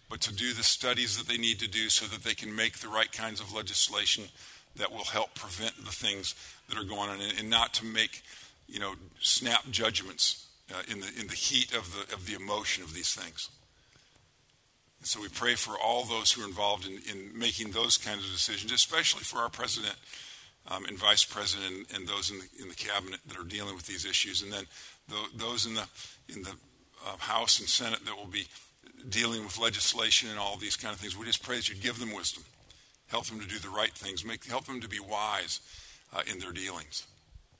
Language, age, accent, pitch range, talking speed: English, 50-69, American, 100-115 Hz, 215 wpm